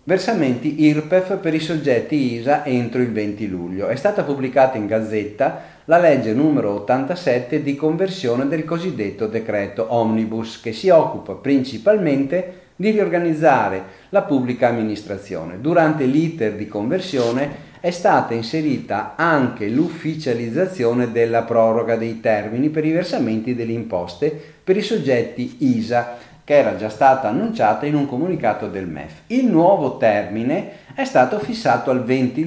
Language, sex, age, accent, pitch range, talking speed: Italian, male, 40-59, native, 110-155 Hz, 135 wpm